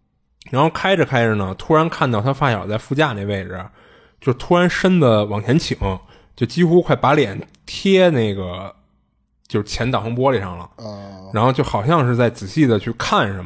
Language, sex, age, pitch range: Chinese, male, 20-39, 105-145 Hz